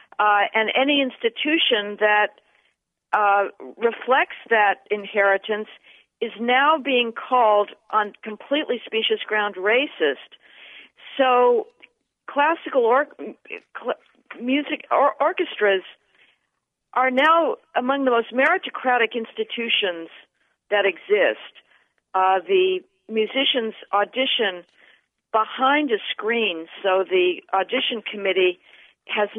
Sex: female